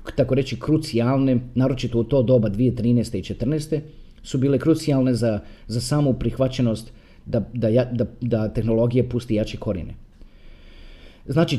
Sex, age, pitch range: male, 40-59, 115-175 Hz